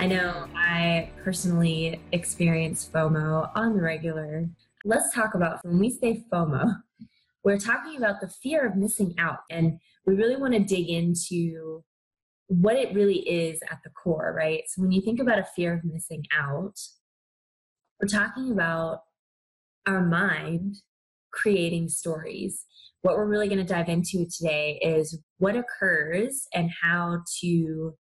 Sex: female